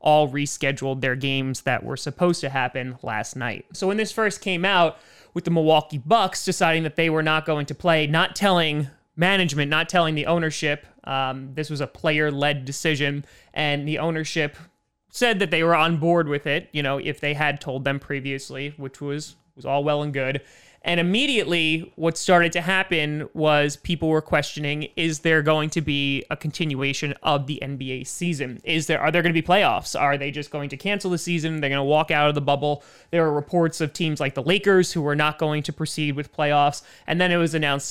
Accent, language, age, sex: American, English, 20-39, male